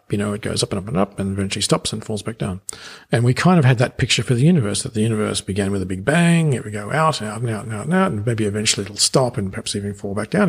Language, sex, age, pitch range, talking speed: English, male, 50-69, 100-125 Hz, 310 wpm